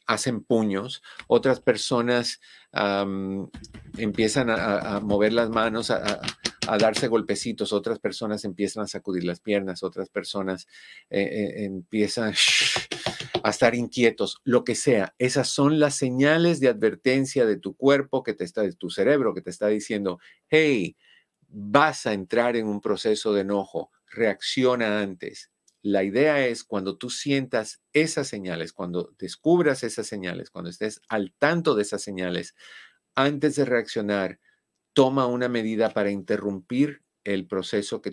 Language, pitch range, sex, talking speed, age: Spanish, 100-130 Hz, male, 150 wpm, 50-69